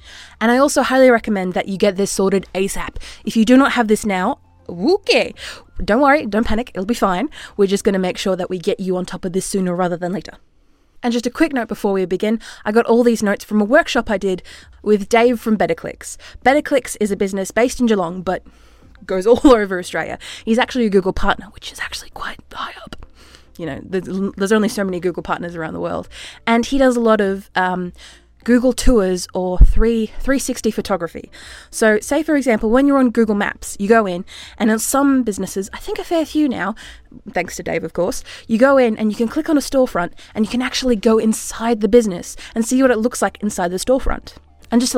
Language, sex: English, female